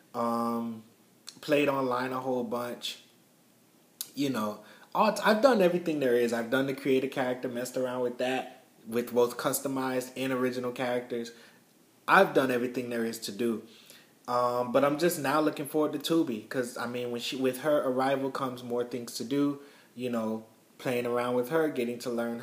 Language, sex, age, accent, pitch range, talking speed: English, male, 20-39, American, 125-165 Hz, 175 wpm